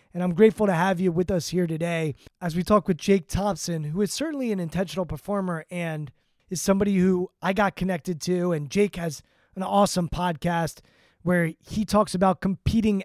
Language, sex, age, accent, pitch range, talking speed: English, male, 20-39, American, 170-195 Hz, 190 wpm